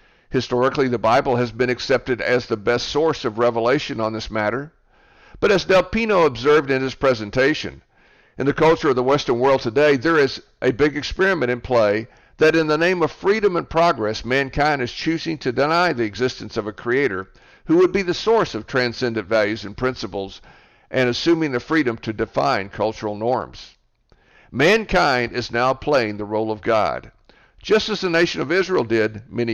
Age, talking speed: 60-79, 185 wpm